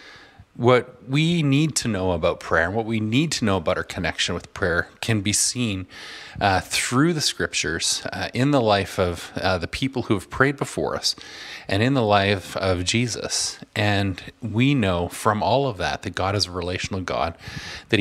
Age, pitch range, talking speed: 30-49, 95-125 Hz, 195 wpm